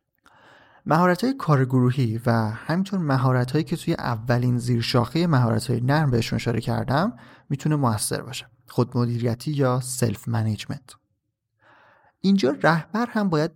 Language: Persian